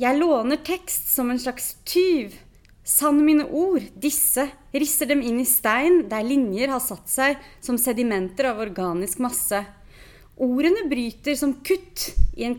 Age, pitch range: 30-49, 205-285 Hz